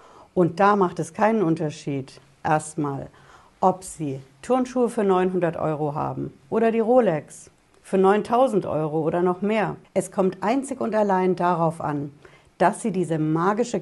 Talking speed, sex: 150 wpm, female